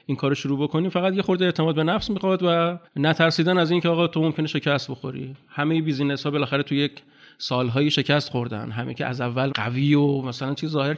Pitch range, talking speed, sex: 135-160 Hz, 200 wpm, male